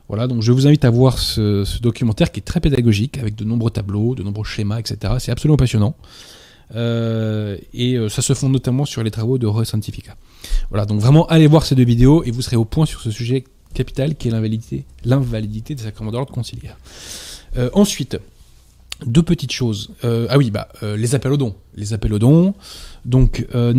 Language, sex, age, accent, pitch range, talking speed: French, male, 20-39, French, 110-135 Hz, 205 wpm